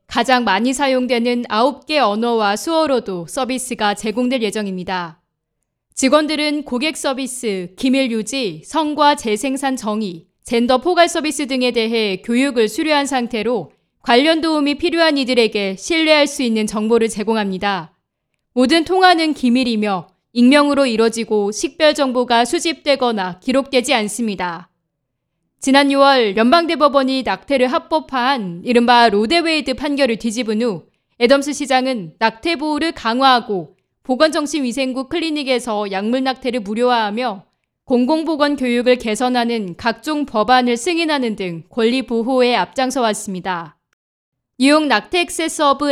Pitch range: 215-285 Hz